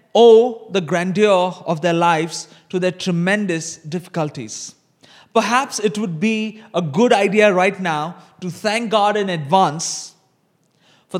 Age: 20-39